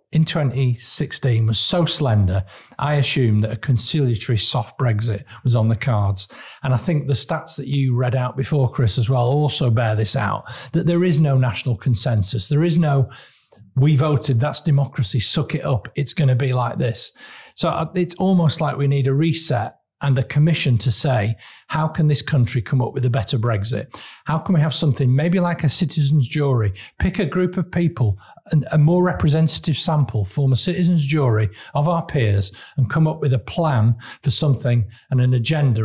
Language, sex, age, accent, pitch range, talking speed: English, male, 40-59, British, 120-155 Hz, 190 wpm